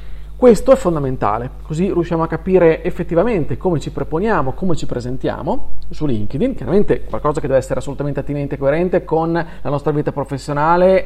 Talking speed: 165 wpm